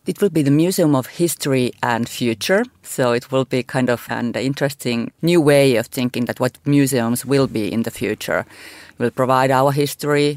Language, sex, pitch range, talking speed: English, female, 120-145 Hz, 190 wpm